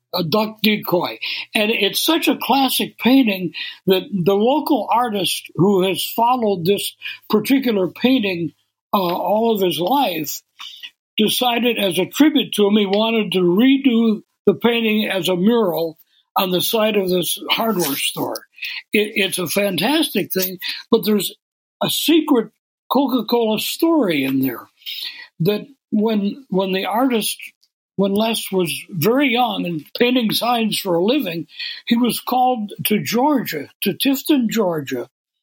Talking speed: 140 wpm